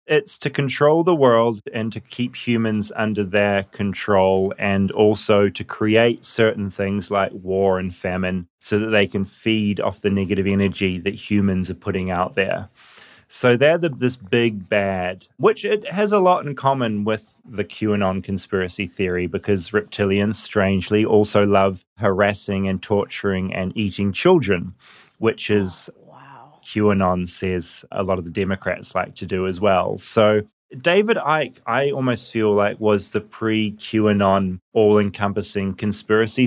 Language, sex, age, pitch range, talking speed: English, male, 30-49, 95-115 Hz, 150 wpm